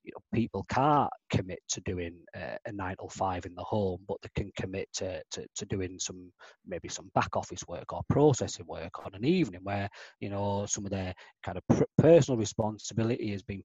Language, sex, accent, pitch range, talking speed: English, male, British, 100-130 Hz, 210 wpm